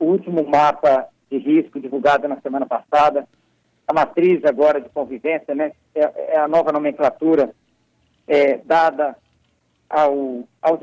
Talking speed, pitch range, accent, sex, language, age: 125 wpm, 140-180 Hz, Brazilian, male, Portuguese, 60-79